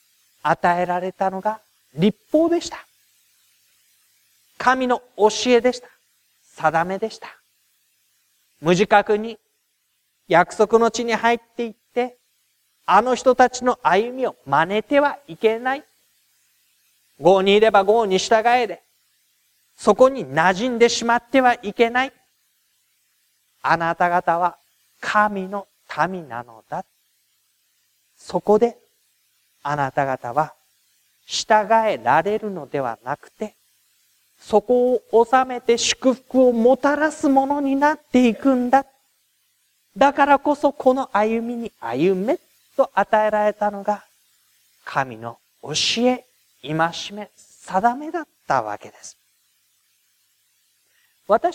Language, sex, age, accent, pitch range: Japanese, male, 40-59, native, 180-255 Hz